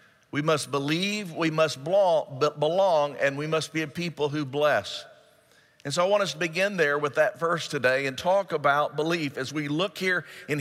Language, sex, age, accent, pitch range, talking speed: English, male, 50-69, American, 145-175 Hz, 200 wpm